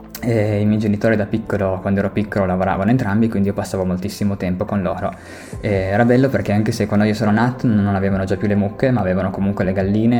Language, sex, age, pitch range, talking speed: Italian, male, 20-39, 95-110 Hz, 220 wpm